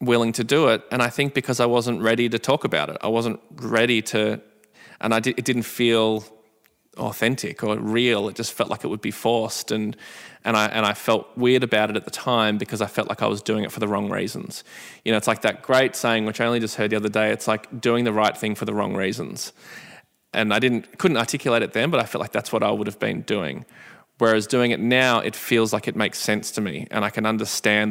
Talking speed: 255 wpm